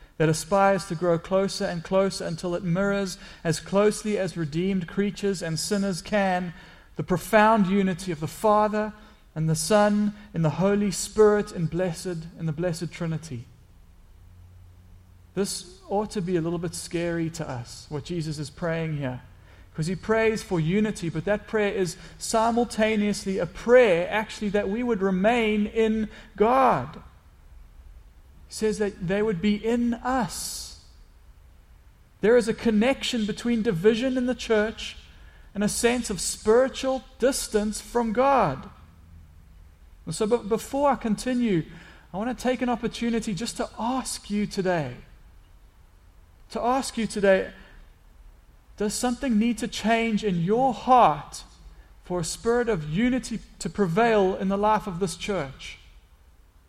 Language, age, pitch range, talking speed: English, 40-59, 160-220 Hz, 140 wpm